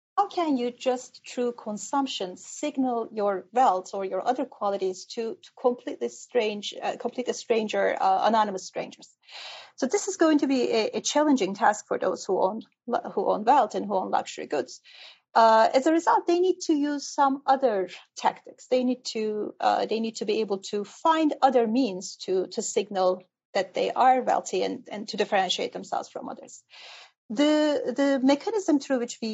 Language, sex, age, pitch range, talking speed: English, female, 30-49, 205-280 Hz, 180 wpm